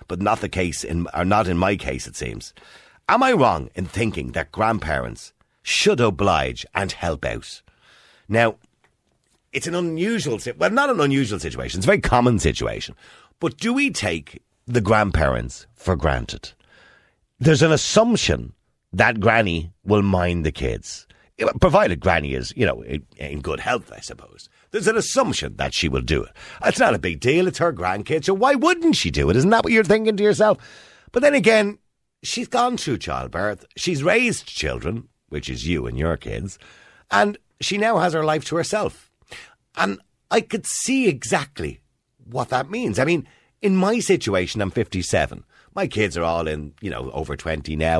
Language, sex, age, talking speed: English, male, 50-69, 180 wpm